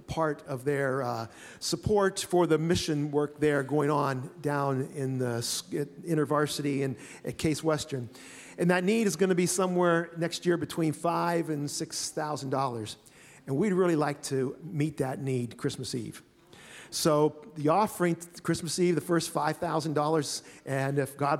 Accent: American